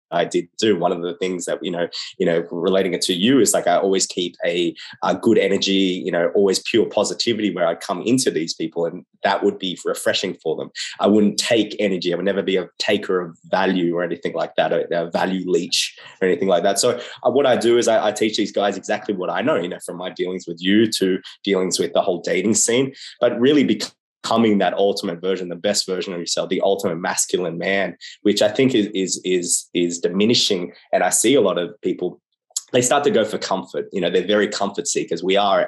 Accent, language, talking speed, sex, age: Australian, English, 235 wpm, male, 20-39